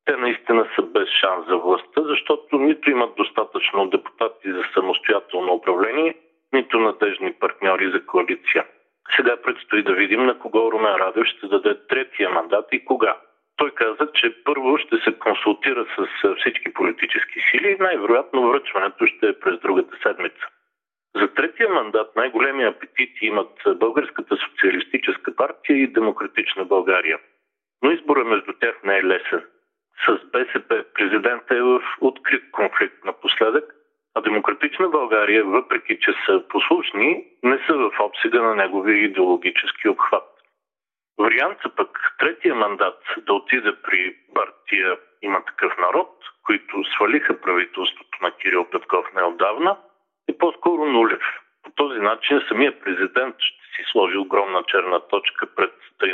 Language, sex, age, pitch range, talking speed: Bulgarian, male, 50-69, 325-430 Hz, 140 wpm